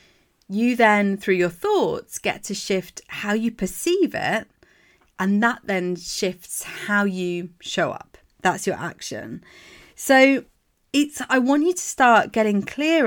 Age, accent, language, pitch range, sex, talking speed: 30-49, British, English, 185-255 Hz, female, 145 wpm